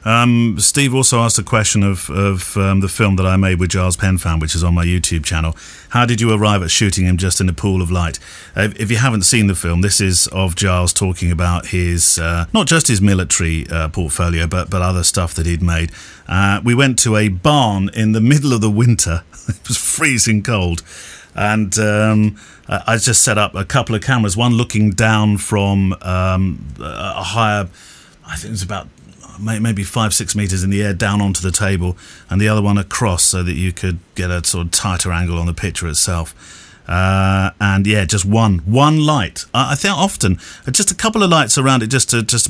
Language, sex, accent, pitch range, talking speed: English, male, British, 90-115 Hz, 215 wpm